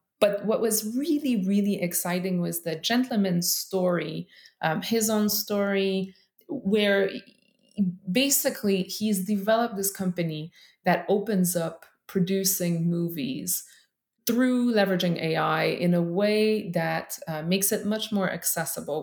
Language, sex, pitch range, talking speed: English, female, 175-215 Hz, 120 wpm